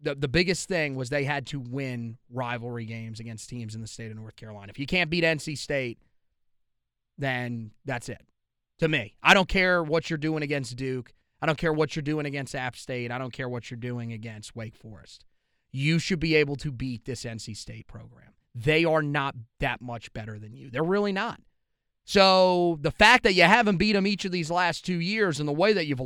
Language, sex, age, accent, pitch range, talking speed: English, male, 30-49, American, 125-185 Hz, 220 wpm